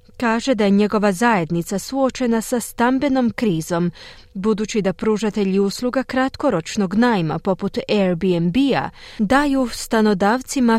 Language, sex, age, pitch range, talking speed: Croatian, female, 30-49, 175-245 Hz, 105 wpm